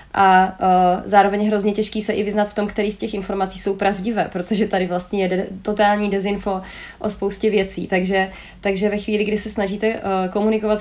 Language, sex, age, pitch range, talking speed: Czech, female, 20-39, 190-215 Hz, 195 wpm